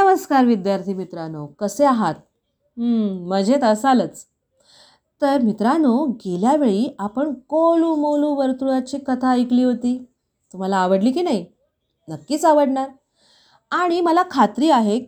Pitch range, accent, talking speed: 205-290 Hz, native, 105 wpm